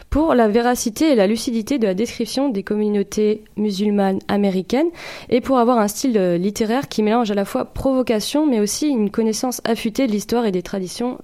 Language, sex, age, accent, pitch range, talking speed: French, female, 20-39, French, 190-240 Hz, 185 wpm